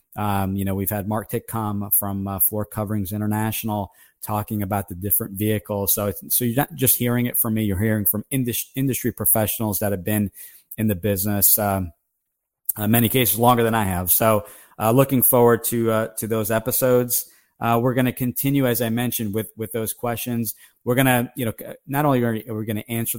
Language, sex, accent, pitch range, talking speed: English, male, American, 105-120 Hz, 205 wpm